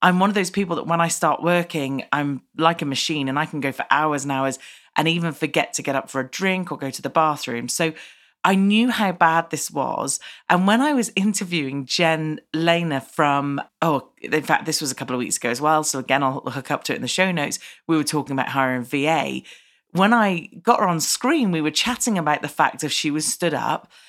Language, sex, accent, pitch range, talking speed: English, female, British, 140-185 Hz, 240 wpm